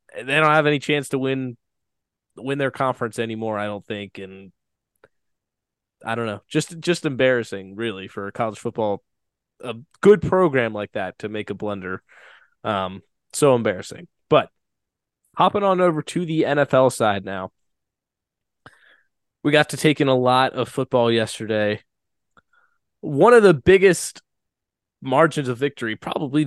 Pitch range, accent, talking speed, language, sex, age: 110-160 Hz, American, 145 wpm, English, male, 20-39